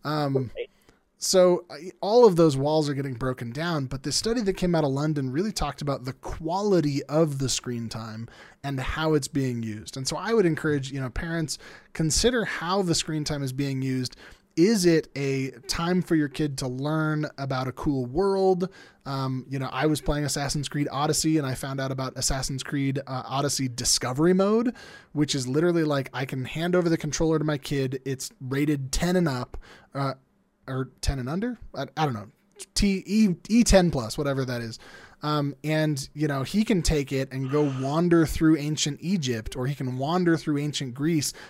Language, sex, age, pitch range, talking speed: English, male, 20-39, 135-165 Hz, 200 wpm